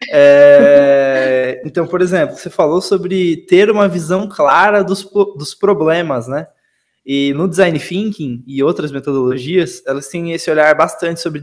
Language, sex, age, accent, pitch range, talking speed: Portuguese, male, 20-39, Brazilian, 160-215 Hz, 140 wpm